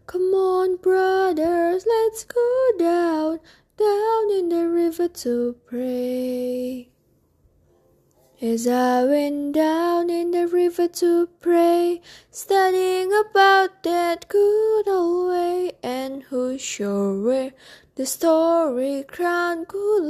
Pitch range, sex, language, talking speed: 280-380 Hz, female, Indonesian, 105 wpm